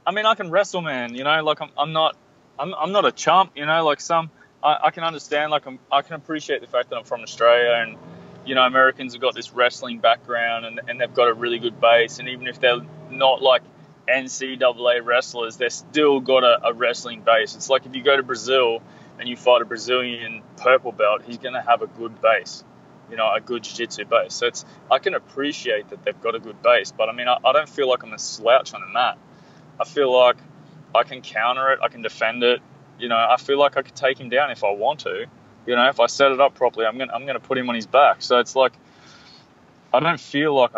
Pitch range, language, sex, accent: 115-140 Hz, English, male, Australian